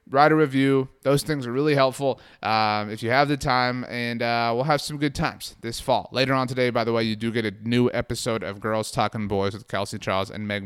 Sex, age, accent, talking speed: male, 30-49, American, 250 wpm